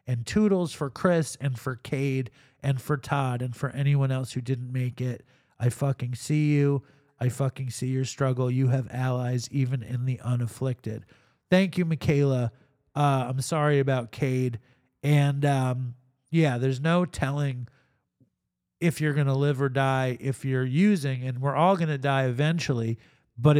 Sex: male